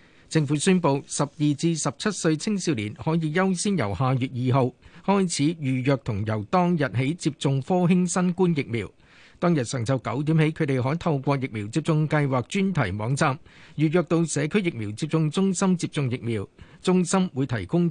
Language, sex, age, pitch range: Chinese, male, 50-69, 130-175 Hz